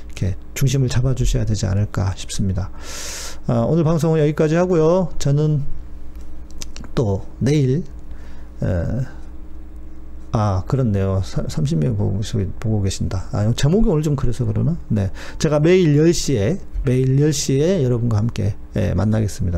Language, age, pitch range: Korean, 40-59, 95-145 Hz